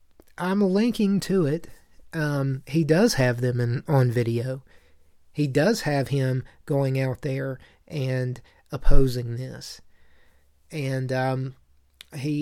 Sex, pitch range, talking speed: male, 120-150 Hz, 120 wpm